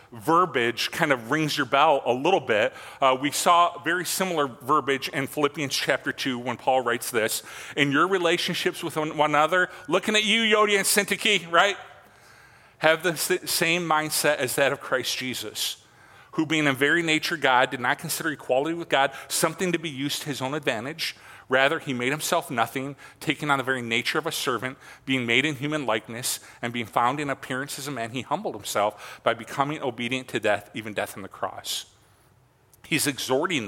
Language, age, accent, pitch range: English, 40-59, American, 125-155 Hz